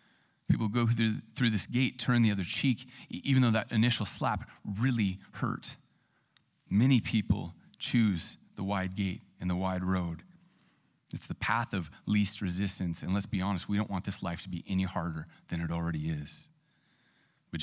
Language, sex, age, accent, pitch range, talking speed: English, male, 30-49, American, 95-120 Hz, 175 wpm